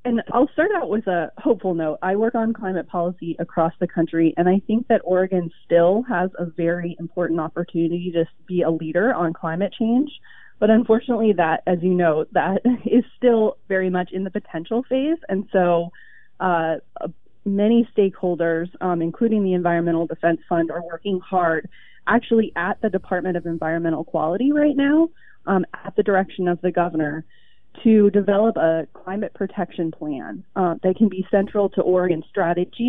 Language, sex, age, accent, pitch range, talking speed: English, female, 30-49, American, 170-215 Hz, 170 wpm